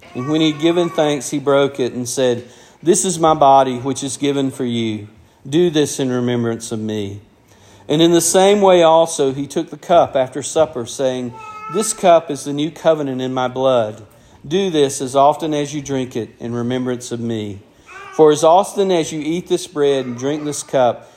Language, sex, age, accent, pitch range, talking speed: English, male, 50-69, American, 120-155 Hz, 205 wpm